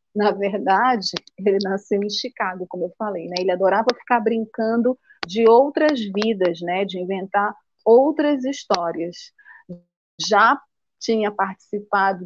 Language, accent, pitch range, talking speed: Portuguese, Brazilian, 190-245 Hz, 120 wpm